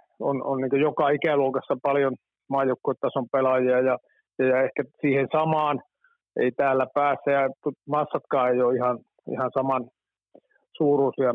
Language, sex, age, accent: Finnish, male, 50-69, native